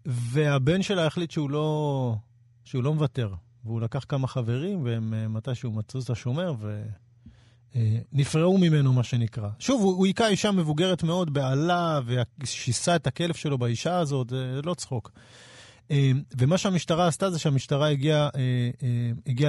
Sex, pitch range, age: male, 120-155 Hz, 40-59